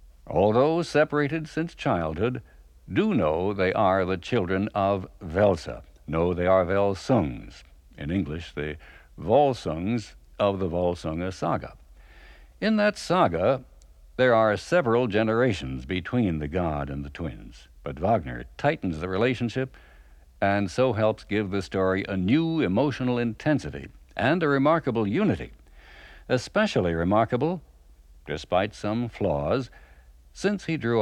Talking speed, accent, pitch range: 125 wpm, American, 75-120 Hz